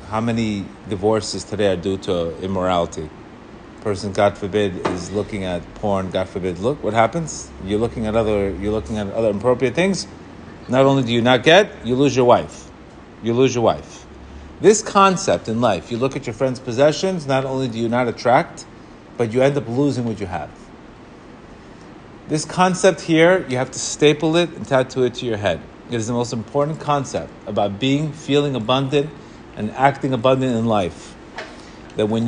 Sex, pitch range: male, 105-145 Hz